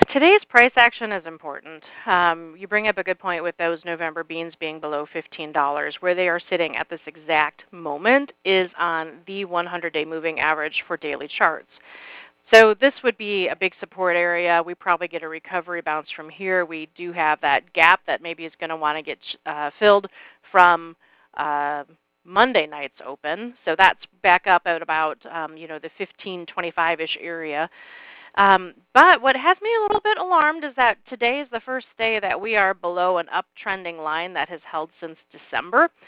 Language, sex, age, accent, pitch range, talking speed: English, female, 40-59, American, 165-215 Hz, 190 wpm